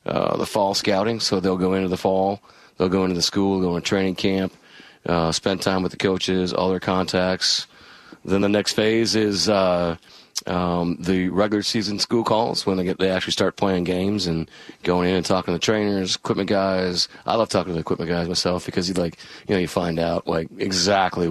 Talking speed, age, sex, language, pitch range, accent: 215 wpm, 30-49, male, English, 90-100 Hz, American